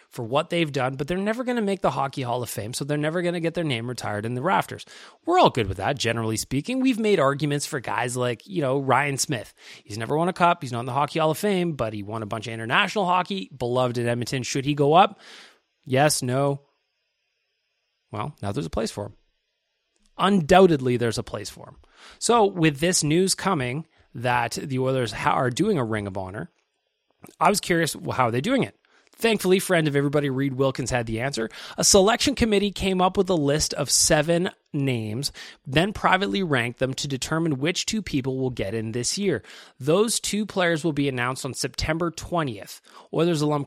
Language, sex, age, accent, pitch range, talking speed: English, male, 30-49, American, 125-185 Hz, 210 wpm